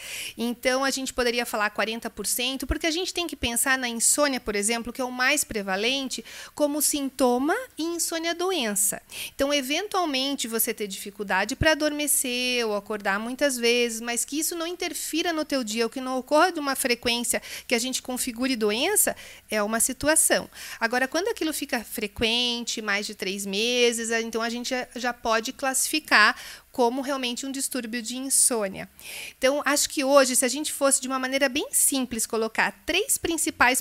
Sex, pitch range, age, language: female, 225-280 Hz, 40-59, Portuguese